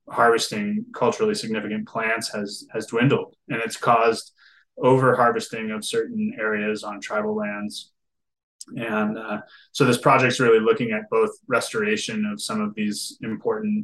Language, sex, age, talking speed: English, male, 20-39, 145 wpm